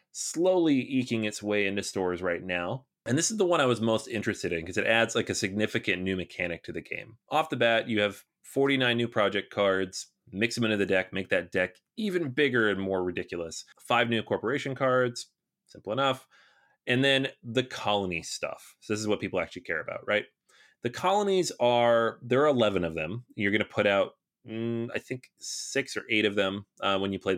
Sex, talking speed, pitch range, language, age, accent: male, 210 wpm, 95-125 Hz, English, 30-49, American